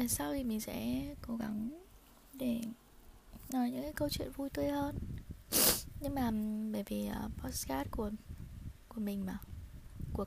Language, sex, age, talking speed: Vietnamese, female, 20-39, 160 wpm